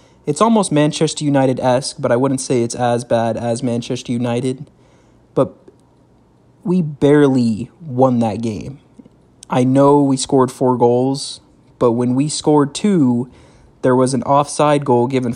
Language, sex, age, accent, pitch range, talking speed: English, male, 20-39, American, 115-135 Hz, 145 wpm